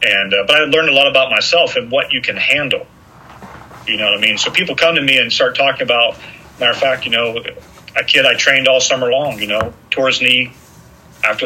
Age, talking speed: 40-59, 240 wpm